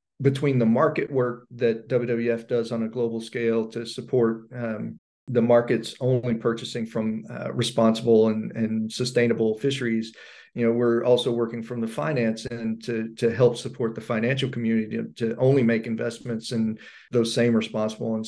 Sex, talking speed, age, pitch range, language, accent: male, 165 wpm, 40-59, 110-120 Hz, English, American